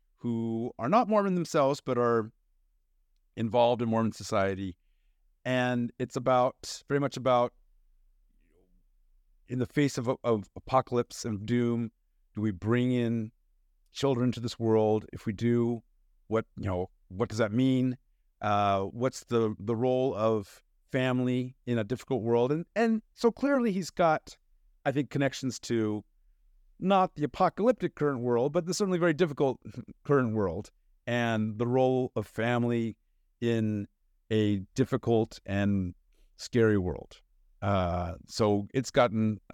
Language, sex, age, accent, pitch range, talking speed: English, male, 50-69, American, 105-135 Hz, 140 wpm